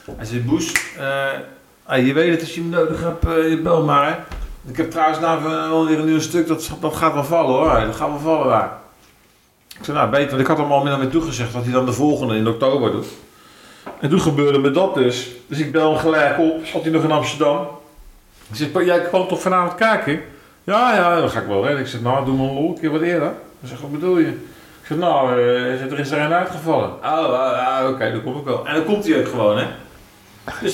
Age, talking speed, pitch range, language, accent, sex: 50-69, 245 wpm, 130-170 Hz, Dutch, Dutch, male